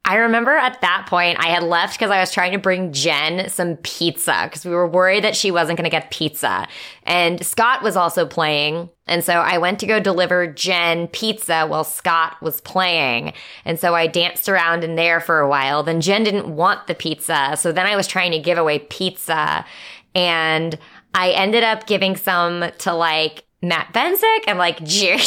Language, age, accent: English, 20-39, American